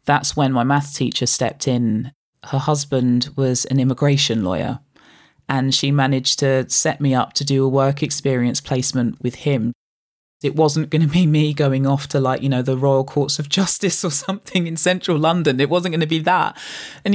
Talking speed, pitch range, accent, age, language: 200 wpm, 135-155 Hz, British, 20-39, English